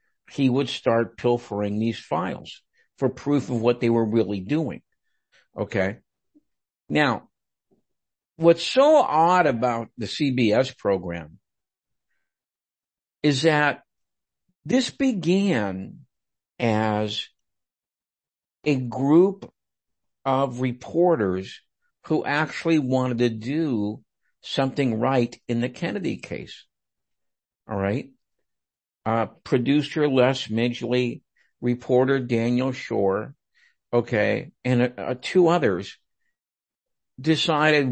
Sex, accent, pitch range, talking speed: male, American, 115-165 Hz, 90 wpm